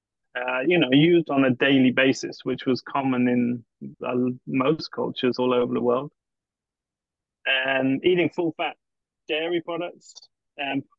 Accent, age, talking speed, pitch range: British, 20-39, 135 wpm, 130-145 Hz